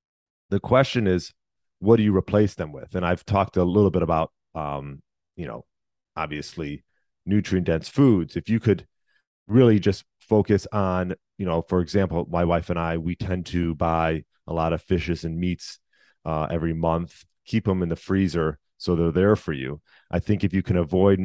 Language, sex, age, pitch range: English, male, 30-49, 80-95 Hz